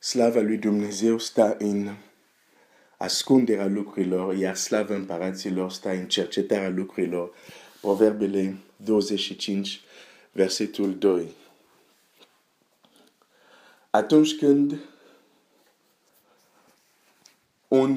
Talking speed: 80 wpm